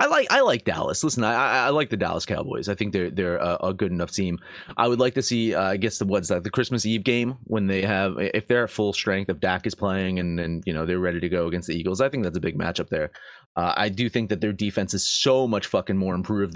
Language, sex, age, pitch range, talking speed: English, male, 30-49, 105-155 Hz, 285 wpm